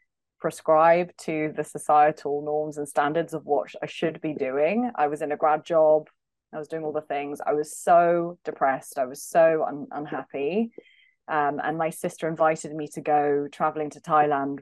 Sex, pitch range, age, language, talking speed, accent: female, 150-185 Hz, 20-39, English, 185 wpm, British